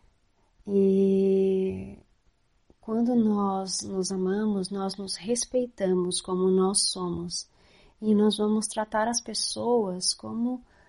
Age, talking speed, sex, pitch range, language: 30-49, 100 wpm, female, 185-220 Hz, Portuguese